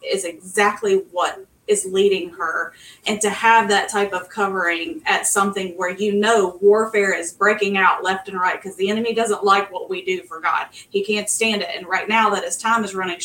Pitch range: 185-230 Hz